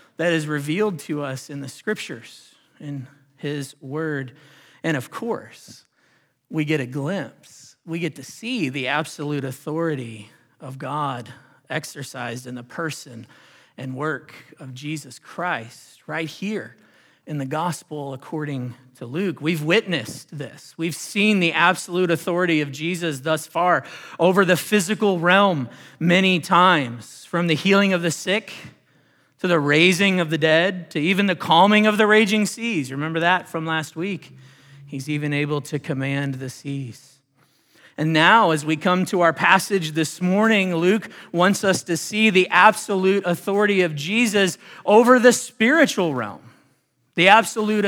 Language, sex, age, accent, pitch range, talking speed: English, male, 40-59, American, 140-185 Hz, 150 wpm